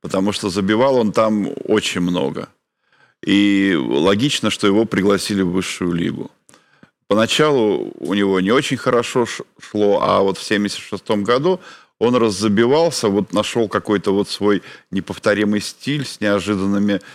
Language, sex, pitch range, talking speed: Russian, male, 100-115 Hz, 135 wpm